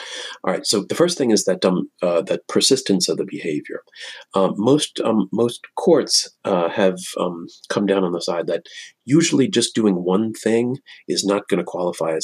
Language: English